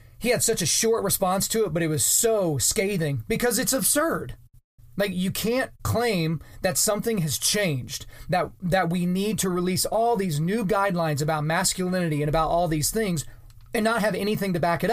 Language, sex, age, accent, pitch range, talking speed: English, male, 30-49, American, 155-205 Hz, 195 wpm